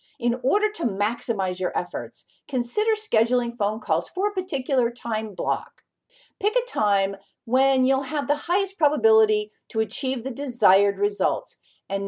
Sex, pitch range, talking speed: female, 195-290 Hz, 150 wpm